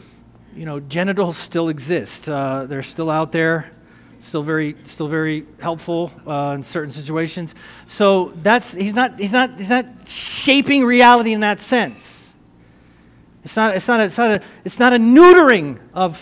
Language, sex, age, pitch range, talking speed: English, male, 40-59, 170-240 Hz, 165 wpm